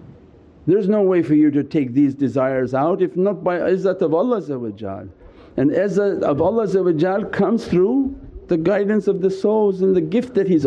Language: English